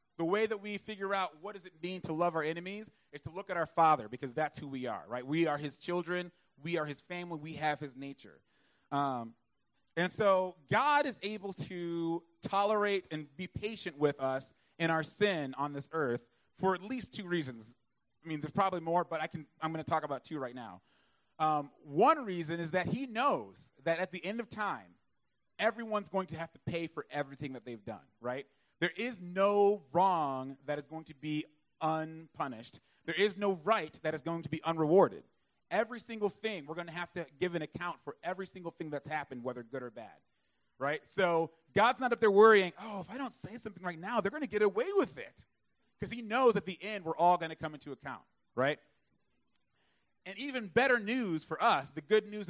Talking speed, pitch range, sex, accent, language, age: 215 wpm, 150-205 Hz, male, American, English, 30-49